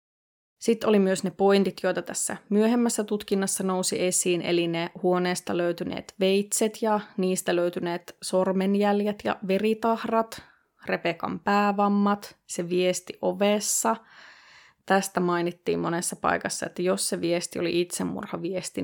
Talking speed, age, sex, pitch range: 120 wpm, 20-39, female, 175-205 Hz